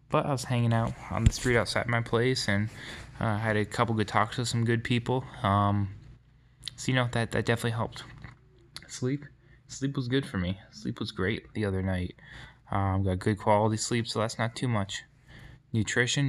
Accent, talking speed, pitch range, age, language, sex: American, 200 wpm, 105-130 Hz, 10-29, English, male